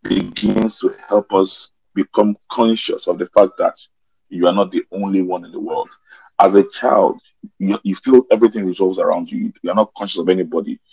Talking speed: 190 wpm